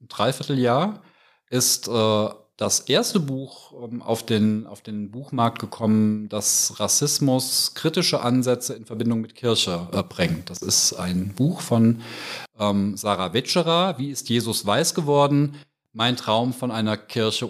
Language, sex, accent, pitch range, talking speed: German, male, German, 110-145 Hz, 145 wpm